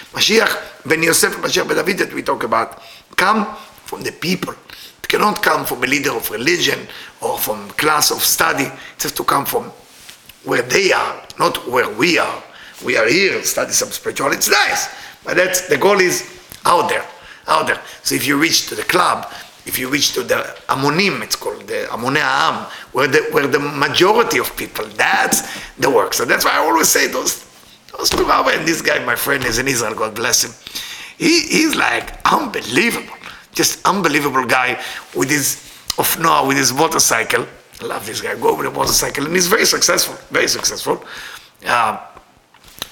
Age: 50-69